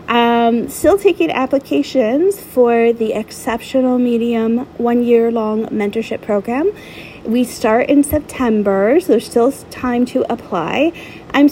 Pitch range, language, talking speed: 215-250 Hz, English, 125 wpm